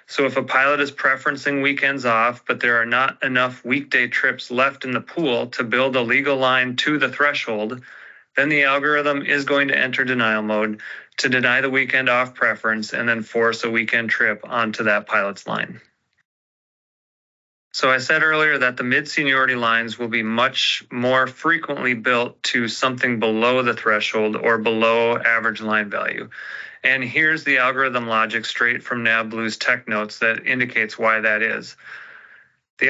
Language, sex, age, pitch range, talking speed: English, male, 30-49, 115-135 Hz, 170 wpm